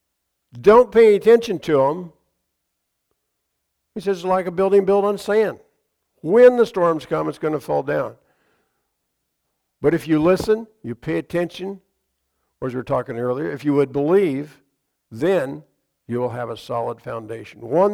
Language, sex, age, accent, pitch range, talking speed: English, male, 60-79, American, 135-195 Hz, 160 wpm